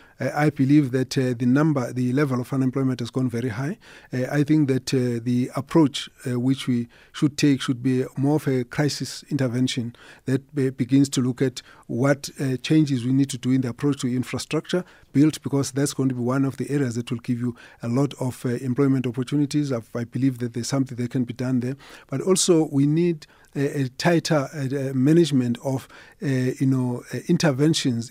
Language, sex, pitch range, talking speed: English, male, 130-150 Hz, 205 wpm